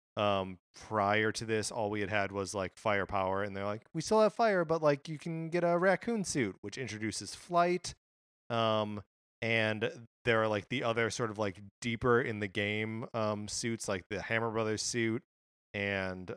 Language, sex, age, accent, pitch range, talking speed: English, male, 30-49, American, 100-125 Hz, 185 wpm